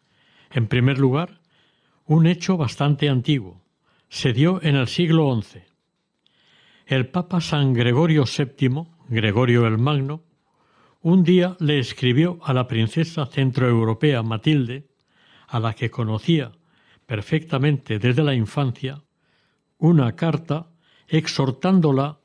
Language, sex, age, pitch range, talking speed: Spanish, male, 60-79, 125-160 Hz, 110 wpm